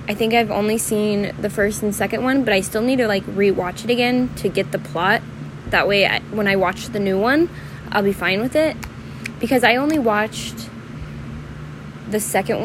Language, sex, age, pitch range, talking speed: English, female, 10-29, 185-230 Hz, 205 wpm